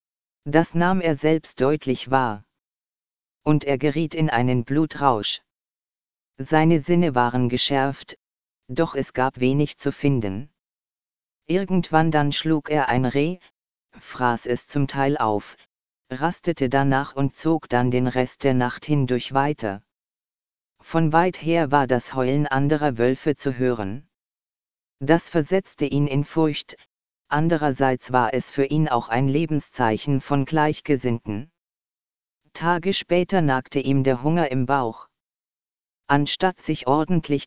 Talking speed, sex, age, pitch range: 130 wpm, female, 40-59, 130-155 Hz